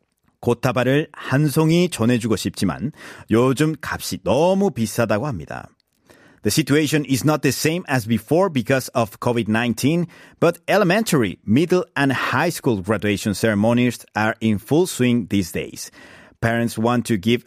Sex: male